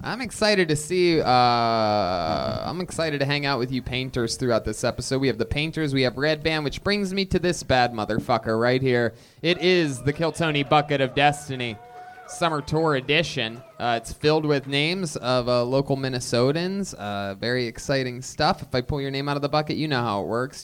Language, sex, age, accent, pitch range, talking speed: English, male, 20-39, American, 125-160 Hz, 205 wpm